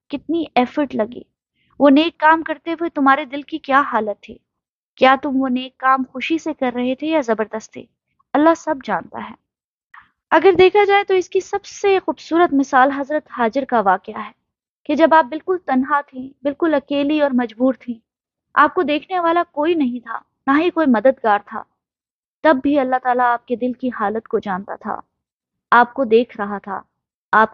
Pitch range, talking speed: 245-310 Hz, 190 wpm